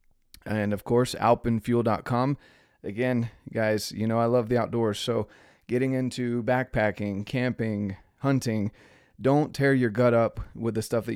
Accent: American